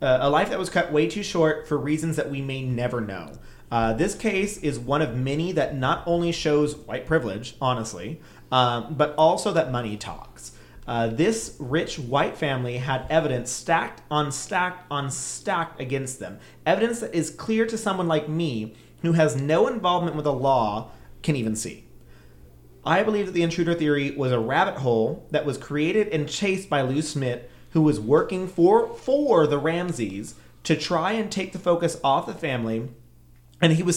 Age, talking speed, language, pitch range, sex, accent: 30-49, 185 wpm, English, 125-170 Hz, male, American